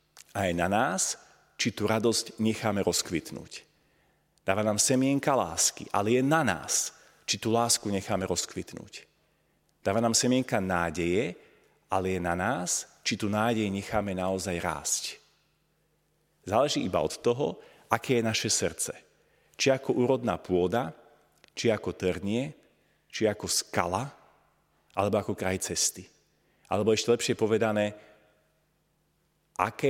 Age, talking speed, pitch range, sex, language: 40-59, 125 wpm, 95-120 Hz, male, Slovak